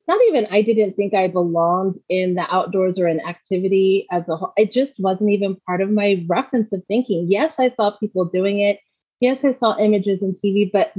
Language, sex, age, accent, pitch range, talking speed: English, female, 30-49, American, 180-225 Hz, 215 wpm